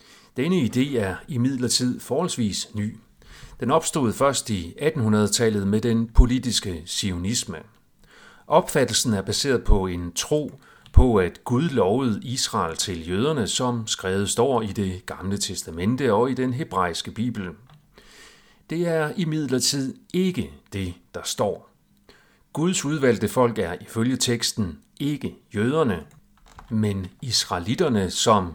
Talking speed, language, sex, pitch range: 125 wpm, Danish, male, 100-130 Hz